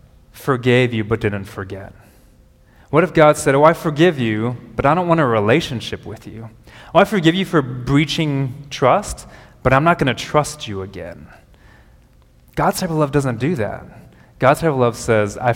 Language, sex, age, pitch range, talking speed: English, male, 20-39, 110-140 Hz, 190 wpm